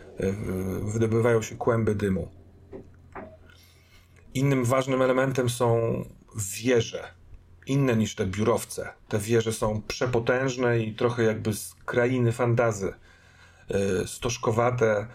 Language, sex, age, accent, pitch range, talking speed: Polish, male, 40-59, native, 100-120 Hz, 95 wpm